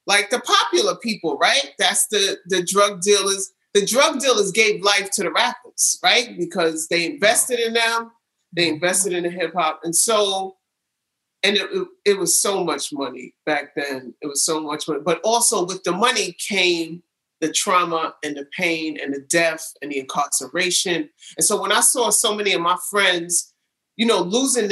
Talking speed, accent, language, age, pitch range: 185 wpm, American, English, 30-49, 165-210 Hz